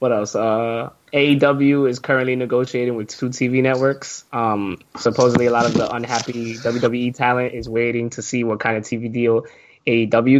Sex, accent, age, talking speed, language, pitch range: male, American, 10-29, 175 wpm, English, 110-130 Hz